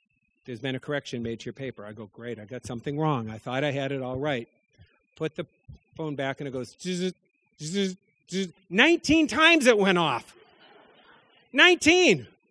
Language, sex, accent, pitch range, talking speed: English, male, American, 125-175 Hz, 170 wpm